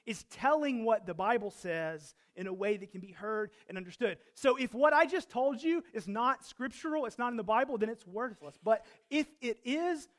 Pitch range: 190-255 Hz